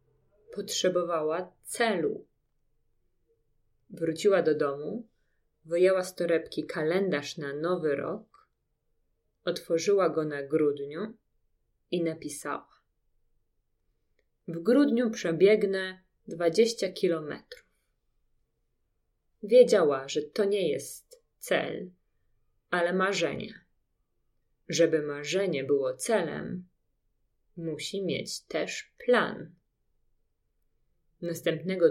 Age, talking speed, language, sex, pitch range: 30-49, 75 wpm, Polish, female, 145-205 Hz